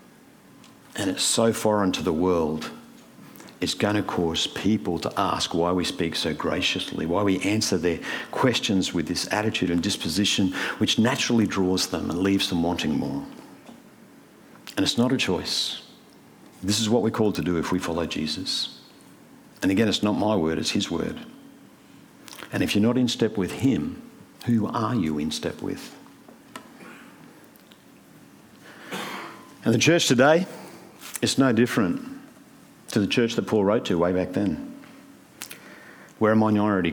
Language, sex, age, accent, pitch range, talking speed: English, male, 50-69, Australian, 95-120 Hz, 160 wpm